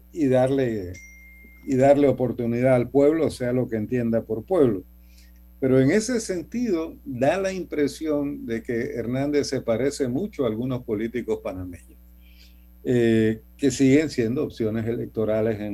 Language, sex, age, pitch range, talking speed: Spanish, male, 50-69, 95-140 Hz, 140 wpm